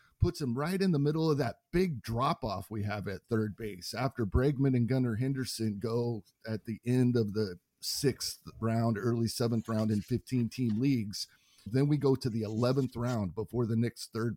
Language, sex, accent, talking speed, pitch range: English, male, American, 190 wpm, 105-130 Hz